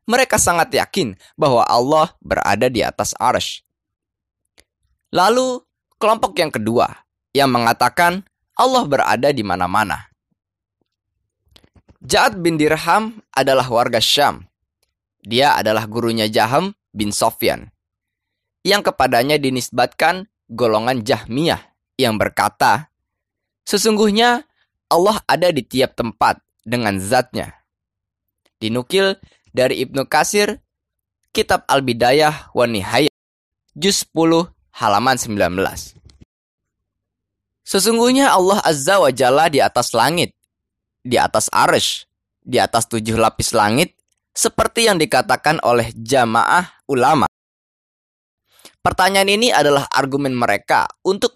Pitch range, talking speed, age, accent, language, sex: 105-180 Hz, 100 wpm, 20-39, native, Indonesian, male